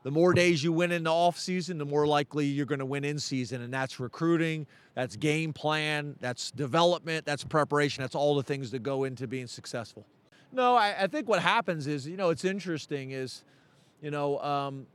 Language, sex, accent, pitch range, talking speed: English, male, American, 145-175 Hz, 210 wpm